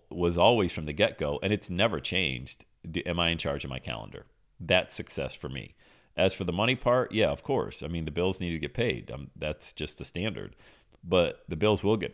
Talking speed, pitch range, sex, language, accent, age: 225 wpm, 75-100 Hz, male, English, American, 40-59